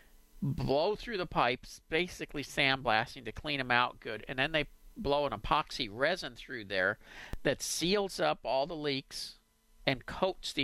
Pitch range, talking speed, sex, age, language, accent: 110-145 Hz, 165 wpm, male, 50-69, English, American